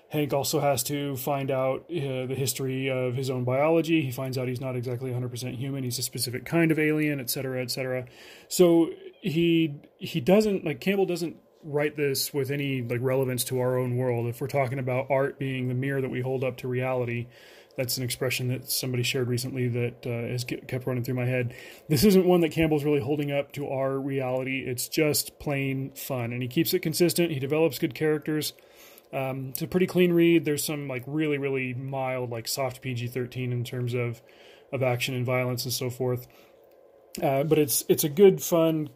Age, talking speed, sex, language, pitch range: 30-49, 205 wpm, male, English, 130-155 Hz